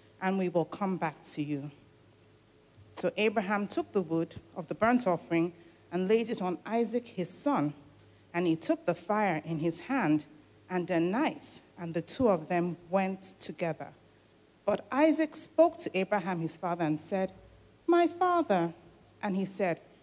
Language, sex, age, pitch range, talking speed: English, female, 60-79, 165-230 Hz, 165 wpm